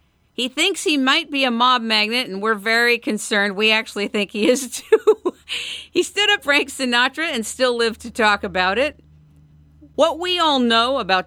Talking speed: 185 wpm